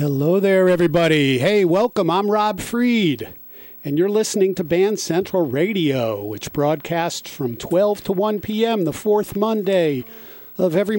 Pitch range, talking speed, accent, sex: 150-195 Hz, 145 wpm, American, male